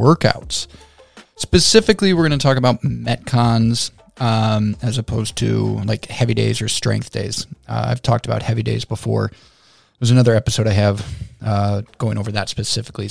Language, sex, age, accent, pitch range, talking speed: English, male, 20-39, American, 110-130 Hz, 160 wpm